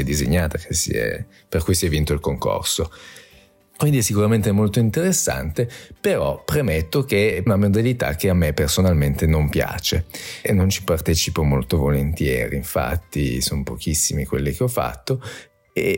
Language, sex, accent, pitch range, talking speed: Italian, male, native, 85-100 Hz, 145 wpm